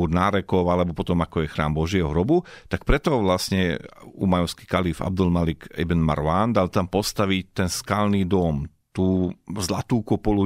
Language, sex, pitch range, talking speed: Slovak, male, 90-105 Hz, 150 wpm